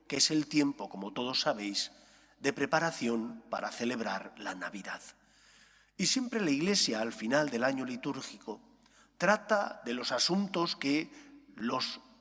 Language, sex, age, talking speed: English, male, 40-59, 140 wpm